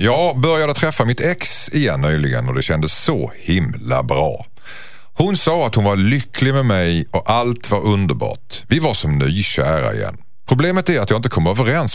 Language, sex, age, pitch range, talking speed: Swedish, male, 50-69, 90-140 Hz, 185 wpm